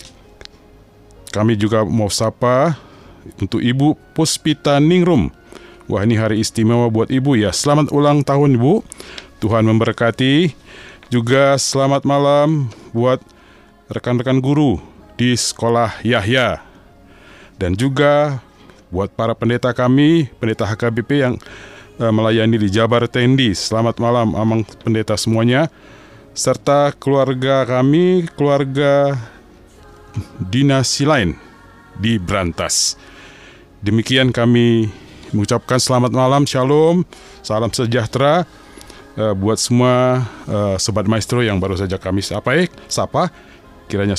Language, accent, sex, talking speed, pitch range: Indonesian, native, male, 100 wpm, 105-130 Hz